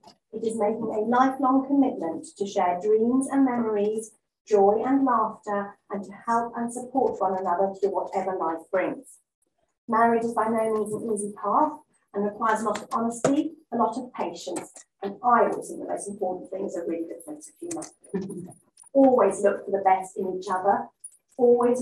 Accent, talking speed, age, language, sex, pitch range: British, 185 wpm, 40-59, English, female, 200-245 Hz